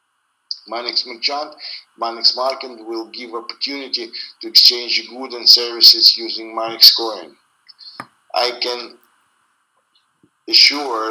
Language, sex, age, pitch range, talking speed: English, male, 50-69, 115-145 Hz, 105 wpm